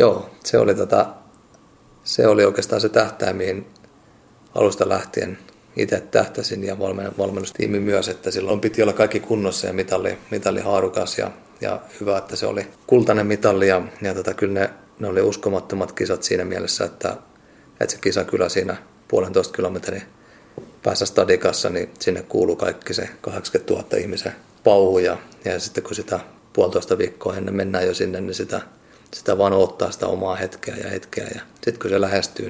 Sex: male